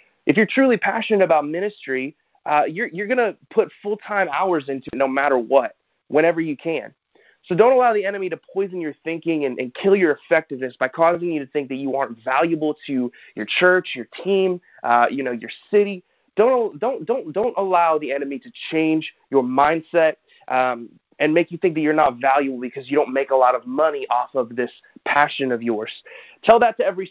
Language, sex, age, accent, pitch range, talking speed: English, male, 30-49, American, 135-190 Hz, 205 wpm